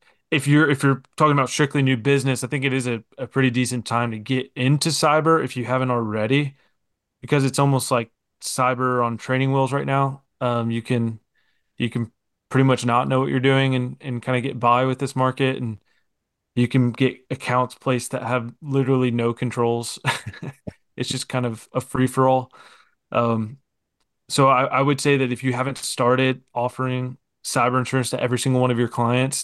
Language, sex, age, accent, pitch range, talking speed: English, male, 20-39, American, 120-135 Hz, 195 wpm